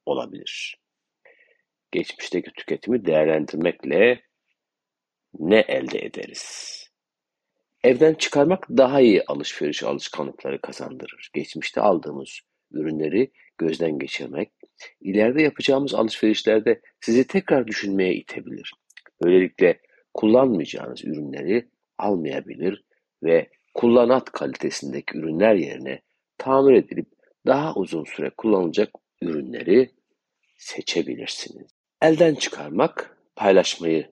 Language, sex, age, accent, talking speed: Turkish, male, 60-79, native, 80 wpm